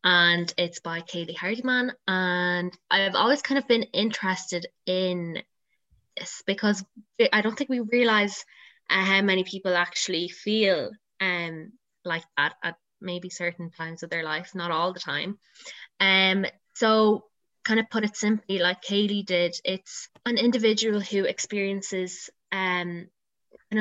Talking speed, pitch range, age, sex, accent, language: 145 wpm, 175-200 Hz, 20-39, female, Irish, English